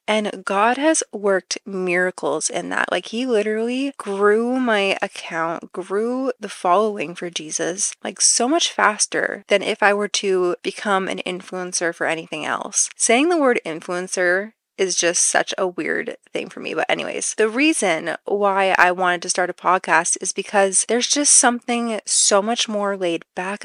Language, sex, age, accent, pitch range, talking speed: English, female, 20-39, American, 180-225 Hz, 170 wpm